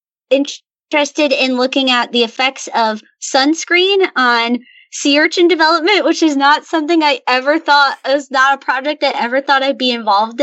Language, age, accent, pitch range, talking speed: English, 20-39, American, 225-275 Hz, 165 wpm